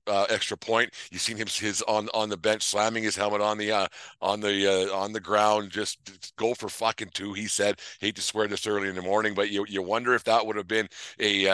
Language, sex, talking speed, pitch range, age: English, male, 250 wpm, 100-110 Hz, 50-69